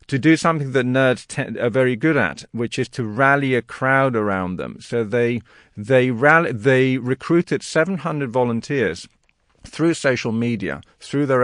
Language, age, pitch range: English, 50-69, 110-140 Hz